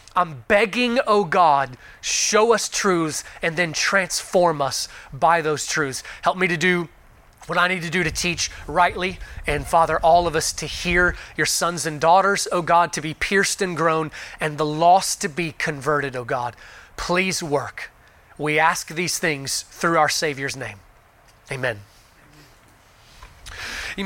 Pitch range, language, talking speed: 165-225 Hz, English, 160 wpm